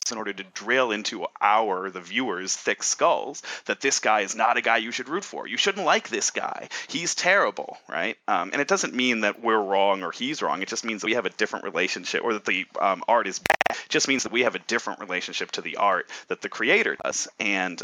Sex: male